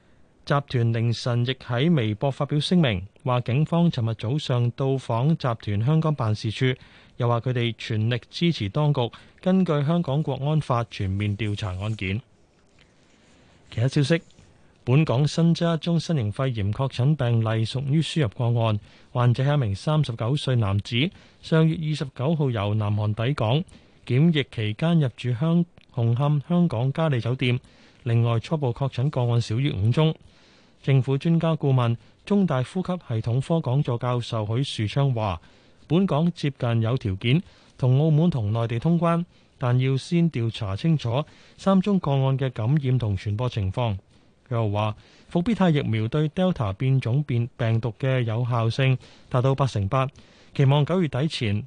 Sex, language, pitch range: male, Chinese, 115-150 Hz